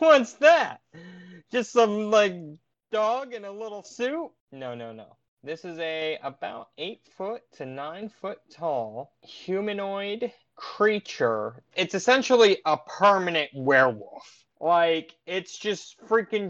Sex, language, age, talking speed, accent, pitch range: male, English, 20-39, 125 wpm, American, 130-200 Hz